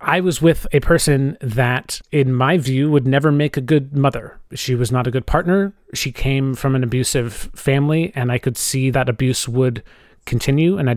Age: 30-49